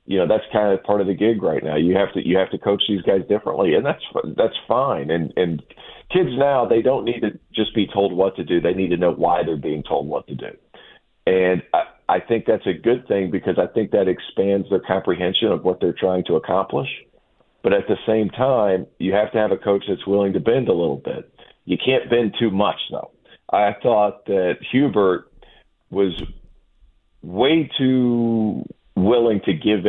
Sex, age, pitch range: male, 40-59, 95-110 Hz